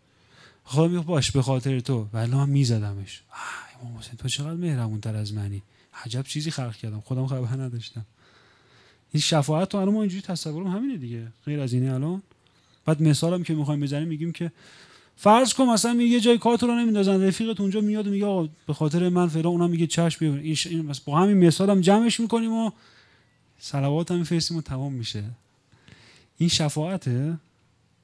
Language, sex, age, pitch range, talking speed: Persian, male, 30-49, 125-165 Hz, 180 wpm